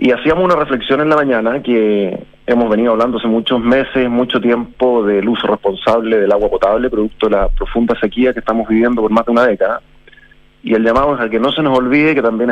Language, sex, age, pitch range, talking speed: Spanish, male, 30-49, 110-135 Hz, 225 wpm